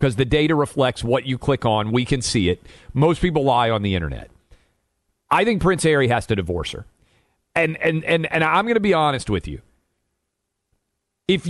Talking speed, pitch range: 200 wpm, 110-180 Hz